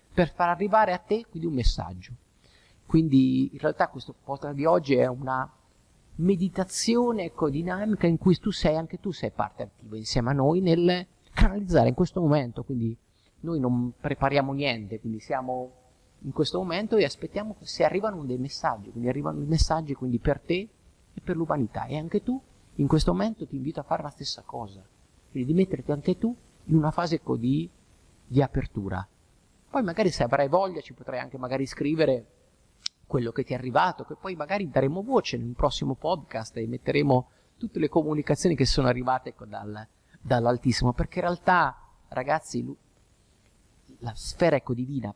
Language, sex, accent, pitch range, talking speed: Italian, male, native, 120-175 Hz, 175 wpm